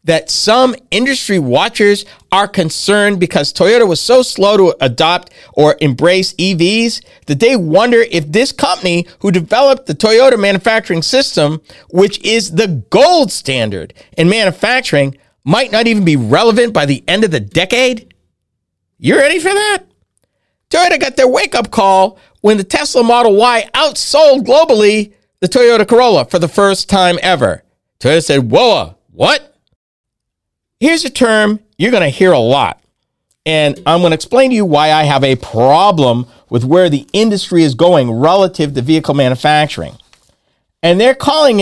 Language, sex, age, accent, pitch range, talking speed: English, male, 50-69, American, 150-230 Hz, 155 wpm